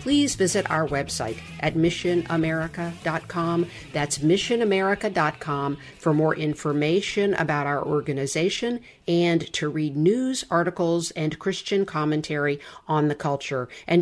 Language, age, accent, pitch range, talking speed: English, 50-69, American, 155-195 Hz, 110 wpm